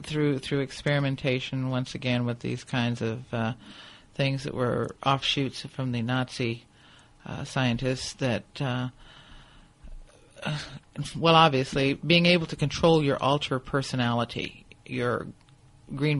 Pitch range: 125-145 Hz